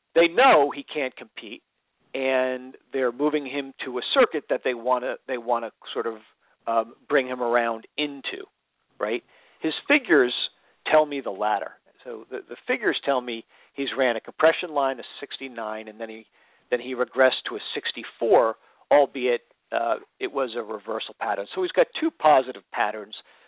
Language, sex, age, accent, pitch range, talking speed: English, male, 50-69, American, 115-150 Hz, 170 wpm